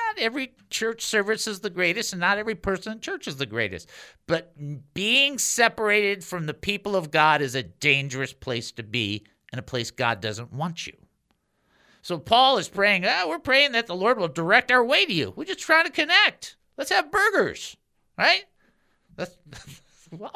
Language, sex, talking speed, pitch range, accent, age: English, male, 190 wpm, 150-225 Hz, American, 50-69